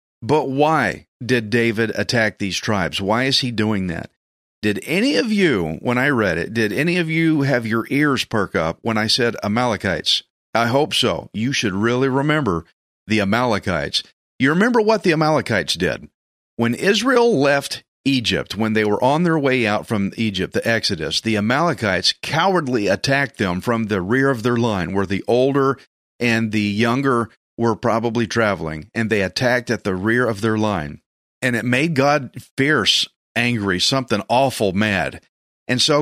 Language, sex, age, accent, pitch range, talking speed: English, male, 40-59, American, 110-140 Hz, 170 wpm